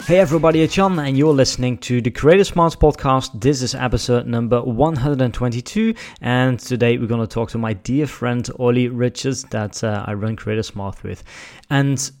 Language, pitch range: English, 110-130 Hz